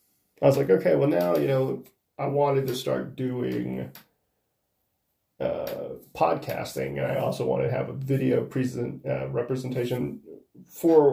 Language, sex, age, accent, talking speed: English, male, 30-49, American, 145 wpm